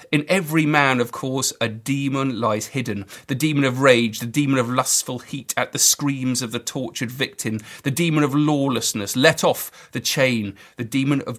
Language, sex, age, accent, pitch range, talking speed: English, male, 40-59, British, 115-150 Hz, 190 wpm